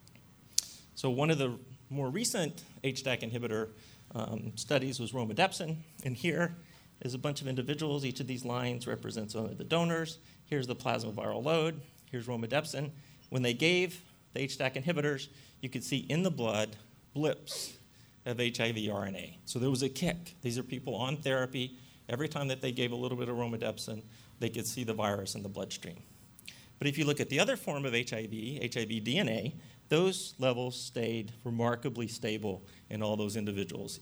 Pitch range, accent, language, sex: 115-140 Hz, American, English, male